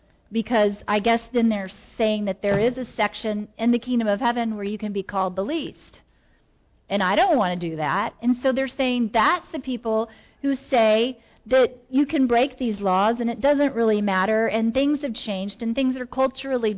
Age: 40-59